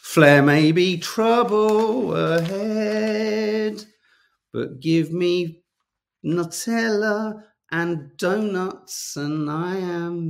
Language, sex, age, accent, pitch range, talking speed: English, male, 40-59, British, 130-180 Hz, 80 wpm